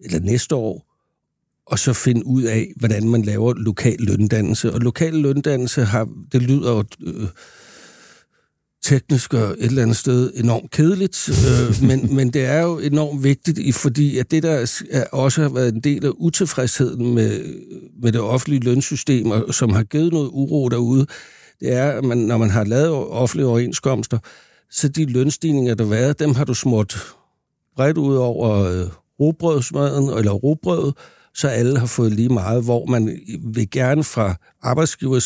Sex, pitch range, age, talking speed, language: male, 115-140 Hz, 60-79, 165 wpm, Danish